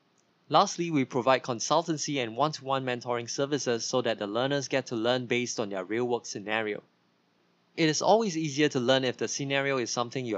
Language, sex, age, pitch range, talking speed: English, male, 20-39, 120-145 Hz, 190 wpm